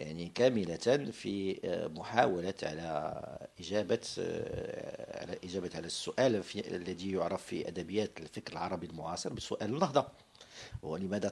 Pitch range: 95-120 Hz